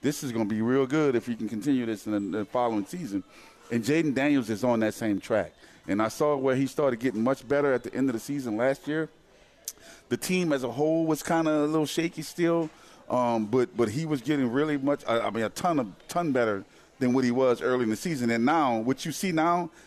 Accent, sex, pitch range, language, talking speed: American, male, 110-145 Hz, English, 250 wpm